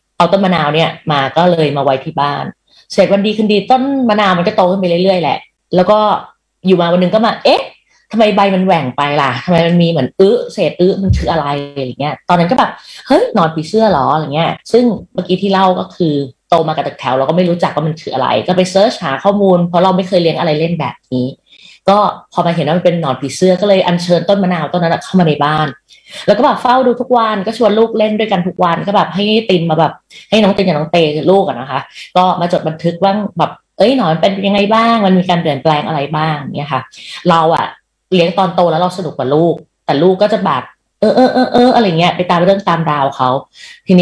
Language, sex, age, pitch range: Thai, female, 20-39, 160-200 Hz